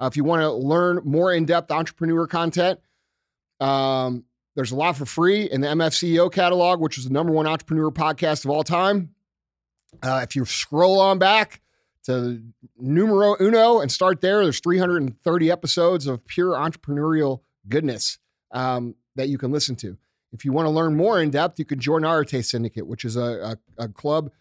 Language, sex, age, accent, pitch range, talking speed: English, male, 30-49, American, 125-160 Hz, 180 wpm